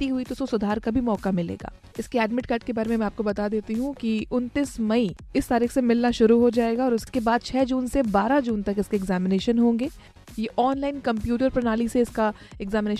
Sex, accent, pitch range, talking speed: female, native, 220-260 Hz, 45 wpm